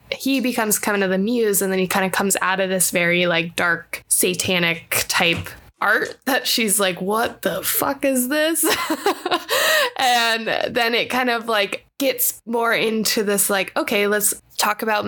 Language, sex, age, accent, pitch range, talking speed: English, female, 10-29, American, 185-230 Hz, 175 wpm